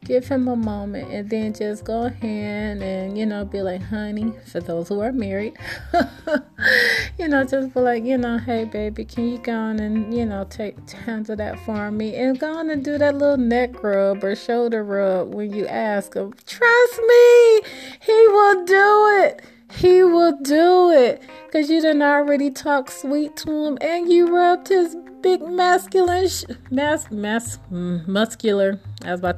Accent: American